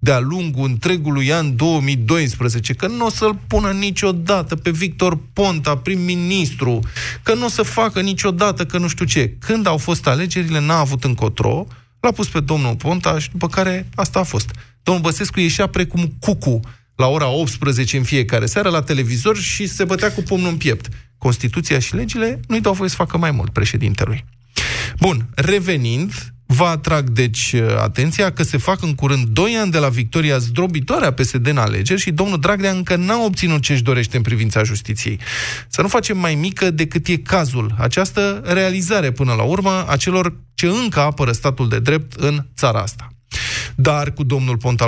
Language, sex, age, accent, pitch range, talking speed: Romanian, male, 20-39, native, 125-185 Hz, 180 wpm